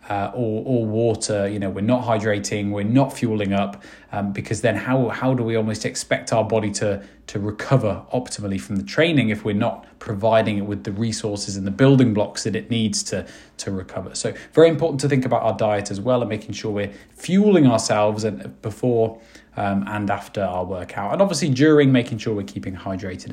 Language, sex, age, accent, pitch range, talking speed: English, male, 20-39, British, 105-135 Hz, 205 wpm